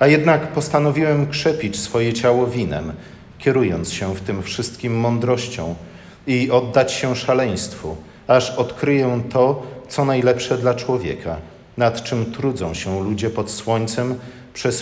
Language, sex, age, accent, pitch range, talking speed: Polish, male, 50-69, native, 105-130 Hz, 130 wpm